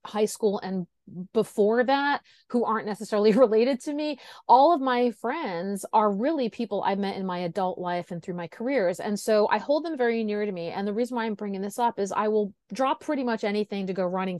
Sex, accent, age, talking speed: female, American, 30-49, 230 wpm